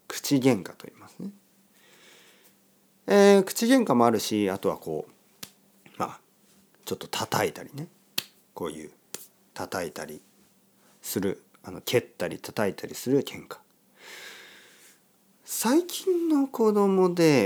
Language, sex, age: Japanese, male, 40-59